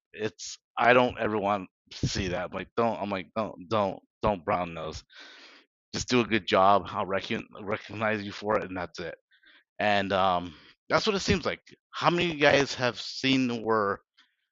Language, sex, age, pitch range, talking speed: English, male, 30-49, 95-120 Hz, 190 wpm